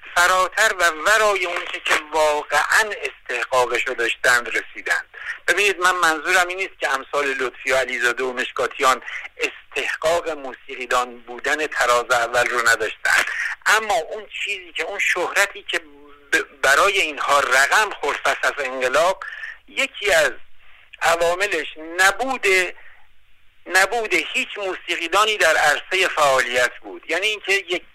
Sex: male